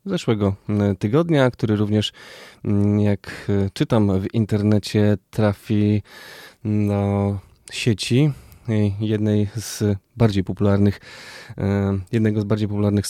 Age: 20-39